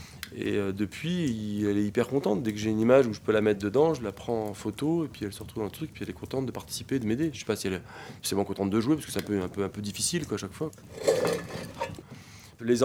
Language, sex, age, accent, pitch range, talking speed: French, male, 20-39, French, 105-125 Hz, 295 wpm